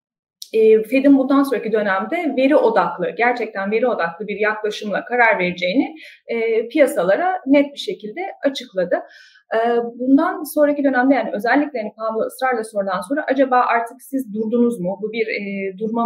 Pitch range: 215-295 Hz